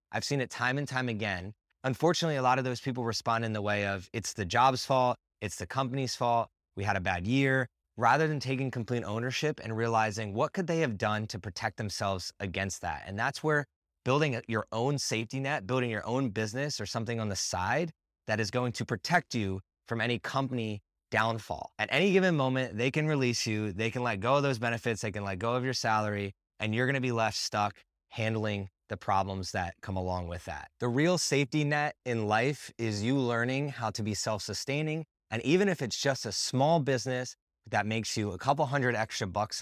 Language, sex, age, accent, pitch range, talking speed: English, male, 20-39, American, 110-140 Hz, 215 wpm